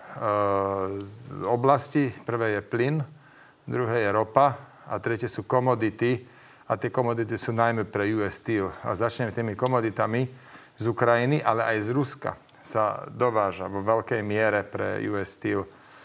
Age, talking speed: 40-59, 140 wpm